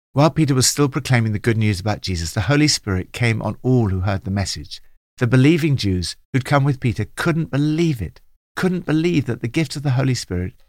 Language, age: English, 50-69